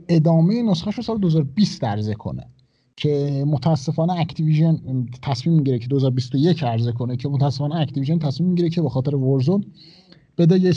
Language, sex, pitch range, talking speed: Persian, male, 130-170 Hz, 145 wpm